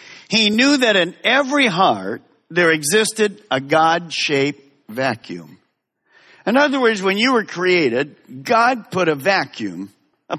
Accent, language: American, English